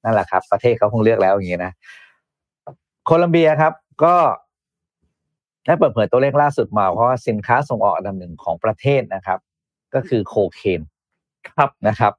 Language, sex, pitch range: Thai, male, 105-135 Hz